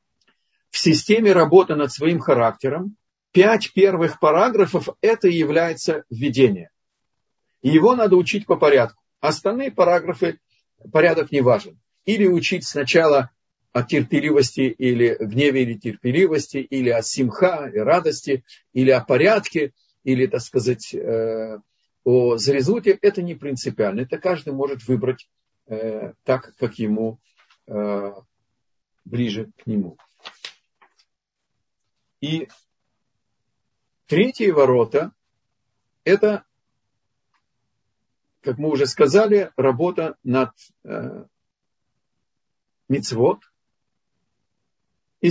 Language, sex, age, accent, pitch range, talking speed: Russian, male, 50-69, native, 120-170 Hz, 95 wpm